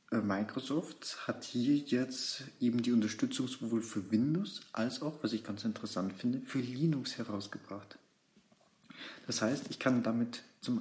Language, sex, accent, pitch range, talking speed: German, male, German, 115-160 Hz, 145 wpm